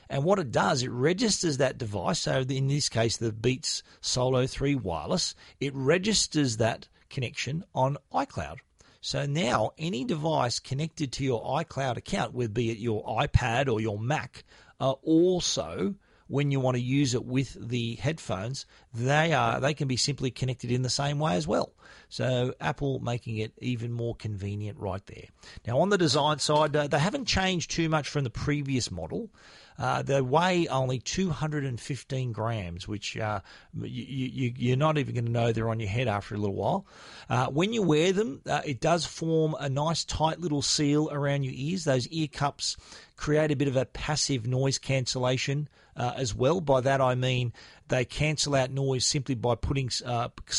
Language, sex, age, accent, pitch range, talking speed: English, male, 40-59, Australian, 115-145 Hz, 185 wpm